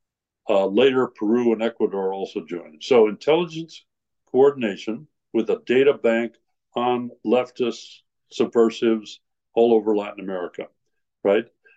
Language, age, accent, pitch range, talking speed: English, 60-79, American, 110-145 Hz, 110 wpm